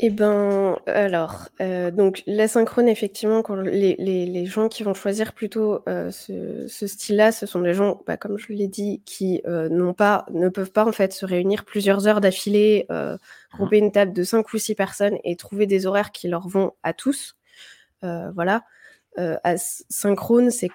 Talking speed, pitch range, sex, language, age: 200 wpm, 185-220 Hz, female, French, 20-39